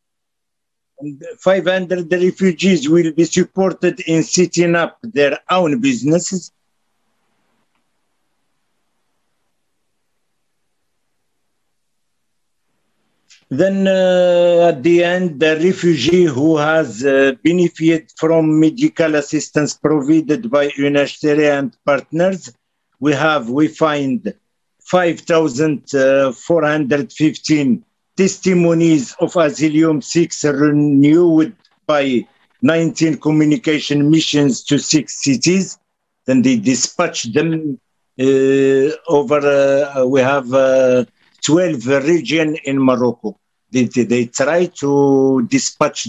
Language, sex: English, male